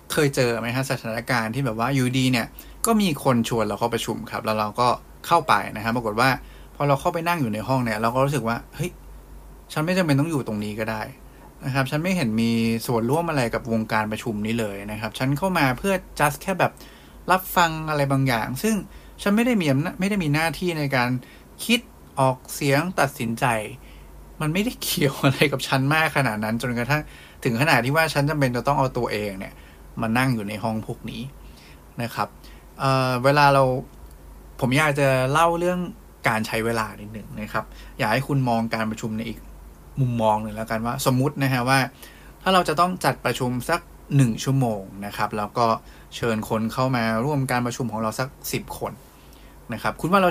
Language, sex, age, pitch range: English, male, 20-39, 110-140 Hz